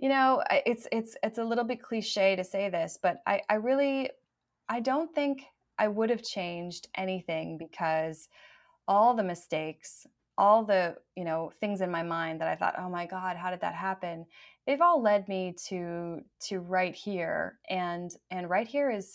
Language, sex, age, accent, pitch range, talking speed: English, female, 20-39, American, 170-215 Hz, 185 wpm